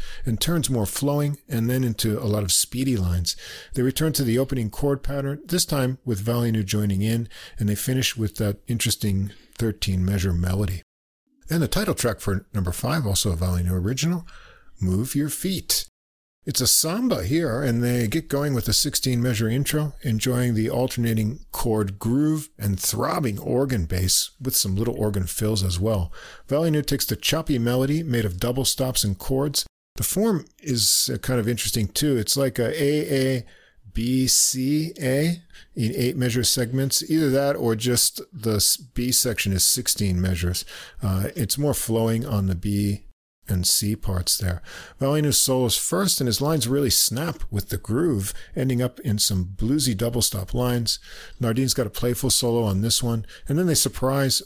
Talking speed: 175 wpm